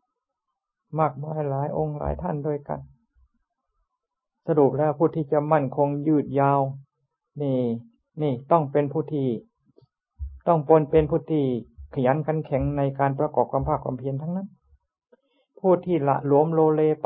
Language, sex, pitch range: Thai, male, 135-160 Hz